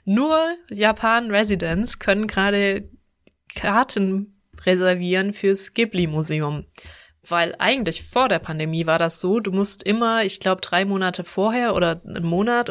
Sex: female